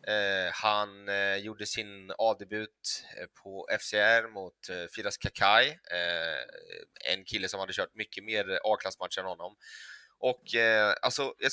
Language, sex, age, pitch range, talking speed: Swedish, male, 20-39, 100-120 Hz, 140 wpm